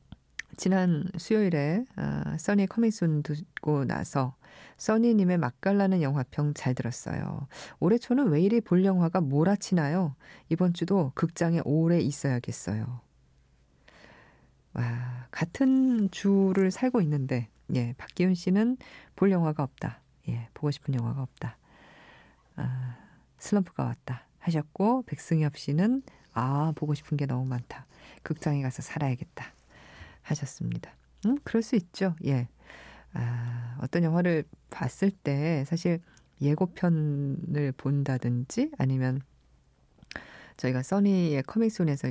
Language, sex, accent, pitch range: Korean, female, native, 135-190 Hz